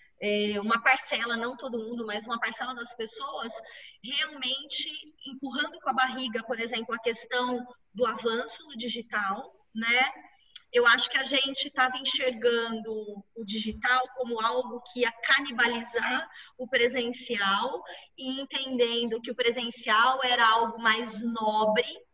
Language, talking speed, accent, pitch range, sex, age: Portuguese, 135 wpm, Brazilian, 225-265 Hz, female, 20-39